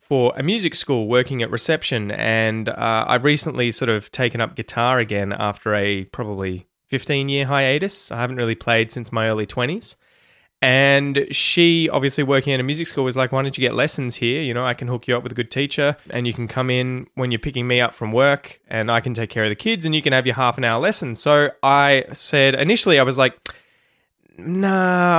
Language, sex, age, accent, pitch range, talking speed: English, male, 20-39, Australian, 110-140 Hz, 225 wpm